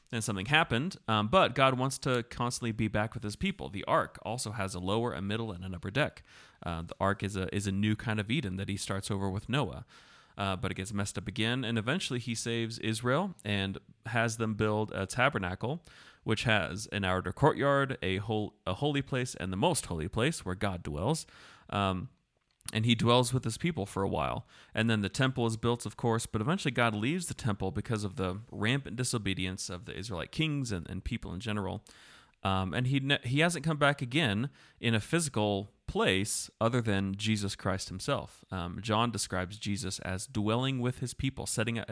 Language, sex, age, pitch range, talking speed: English, male, 30-49, 95-125 Hz, 210 wpm